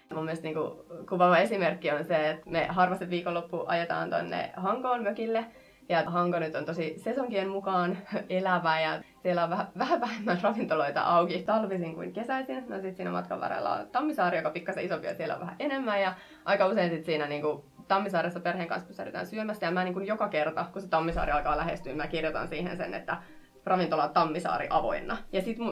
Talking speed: 190 wpm